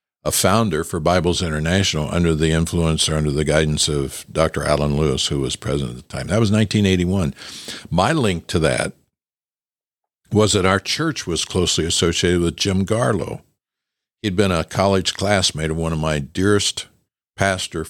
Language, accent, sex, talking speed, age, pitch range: English, American, male, 170 wpm, 60-79, 75-90 Hz